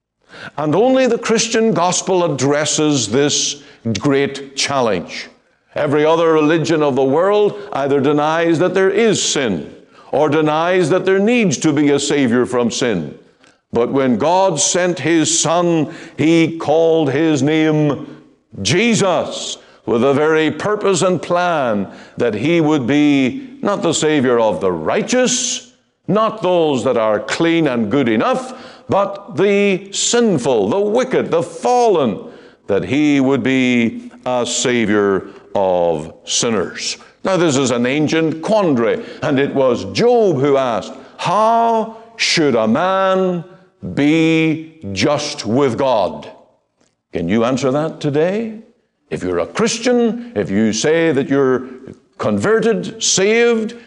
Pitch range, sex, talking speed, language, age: 145-205 Hz, male, 130 wpm, English, 60-79